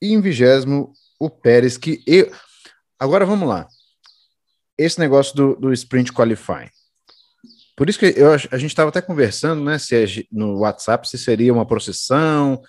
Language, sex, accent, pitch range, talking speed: Portuguese, male, Brazilian, 115-160 Hz, 160 wpm